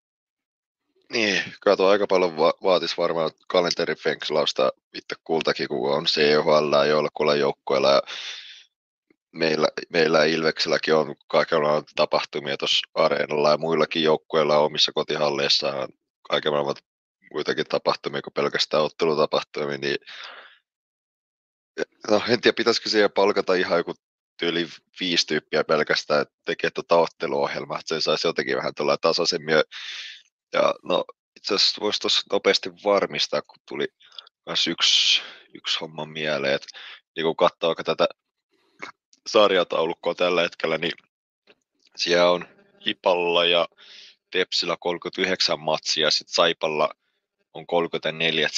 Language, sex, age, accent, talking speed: Finnish, male, 20-39, native, 115 wpm